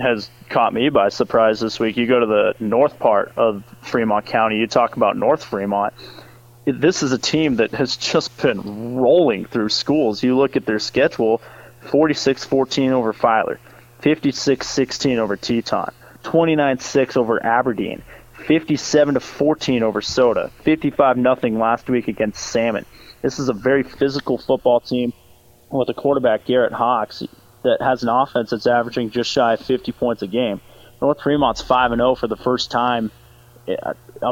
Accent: American